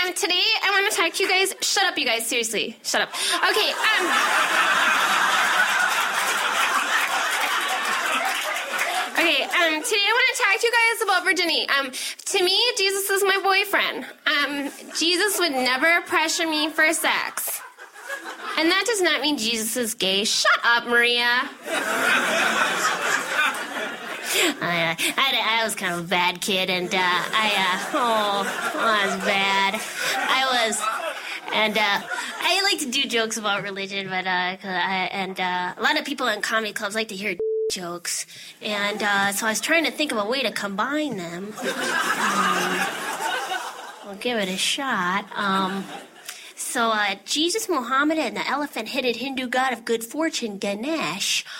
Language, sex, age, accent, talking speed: English, female, 10-29, American, 155 wpm